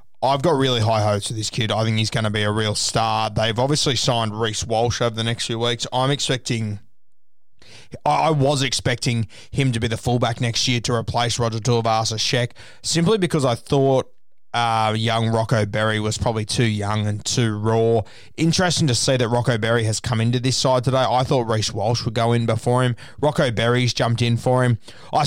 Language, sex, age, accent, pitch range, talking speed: English, male, 20-39, Australian, 110-130 Hz, 205 wpm